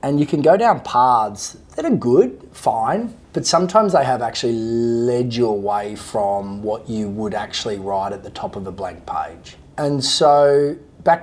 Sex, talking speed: male, 180 wpm